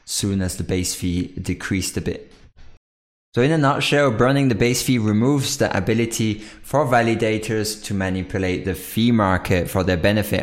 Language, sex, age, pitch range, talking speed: English, male, 20-39, 95-115 Hz, 165 wpm